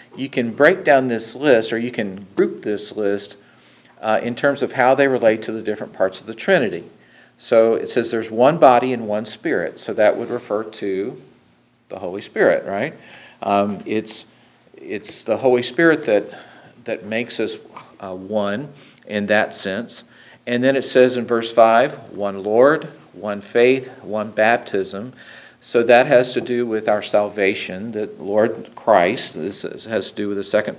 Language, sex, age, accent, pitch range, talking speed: English, male, 50-69, American, 105-125 Hz, 175 wpm